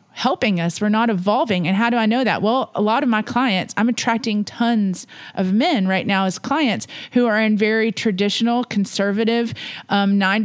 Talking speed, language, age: 195 wpm, English, 30-49